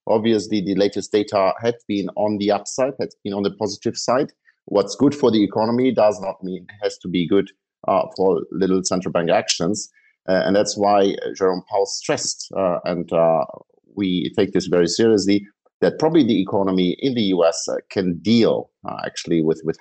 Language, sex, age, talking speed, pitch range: English, male, 50-69, 190 wpm, 85-105 Hz